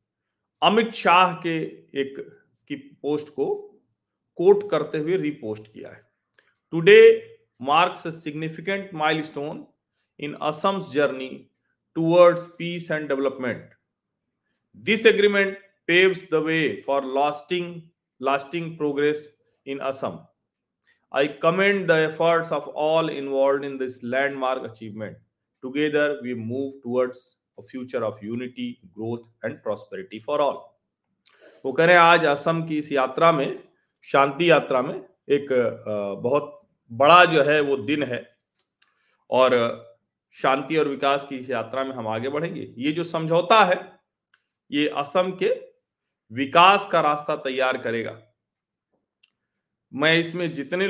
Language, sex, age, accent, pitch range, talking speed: Hindi, male, 40-59, native, 135-175 Hz, 110 wpm